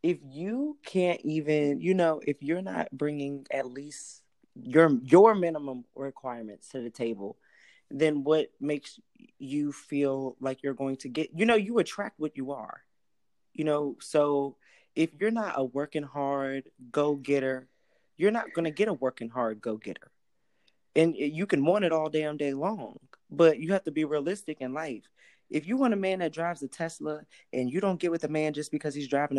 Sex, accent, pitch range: male, American, 130-165 Hz